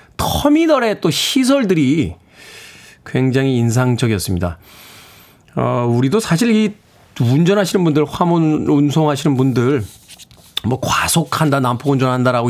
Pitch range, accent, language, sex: 115-155 Hz, native, Korean, male